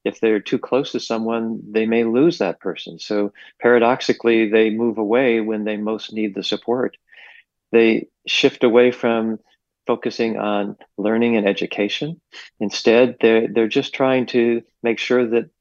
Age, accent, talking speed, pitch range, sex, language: 40-59, American, 155 wpm, 105-120 Hz, male, English